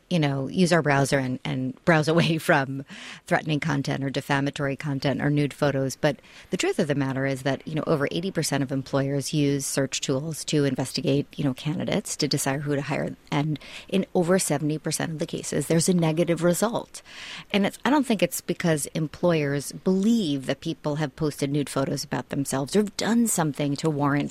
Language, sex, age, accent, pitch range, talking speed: English, female, 30-49, American, 145-180 Hz, 195 wpm